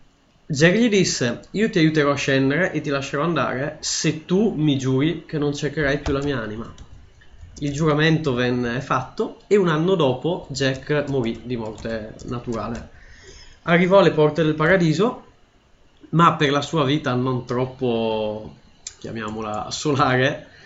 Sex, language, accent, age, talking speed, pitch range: male, Italian, native, 20-39, 145 wpm, 120-155 Hz